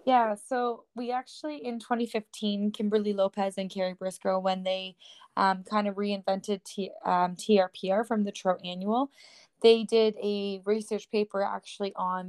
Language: English